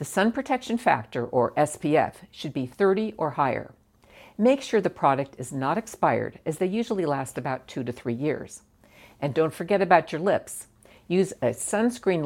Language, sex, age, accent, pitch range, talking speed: English, female, 60-79, American, 135-205 Hz, 175 wpm